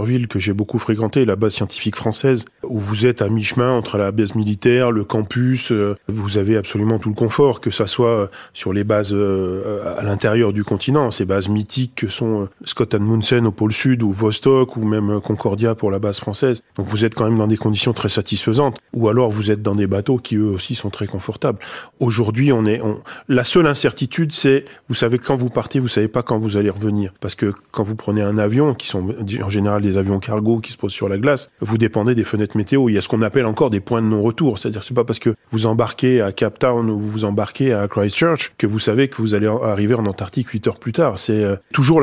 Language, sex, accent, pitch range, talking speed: French, male, French, 105-125 Hz, 240 wpm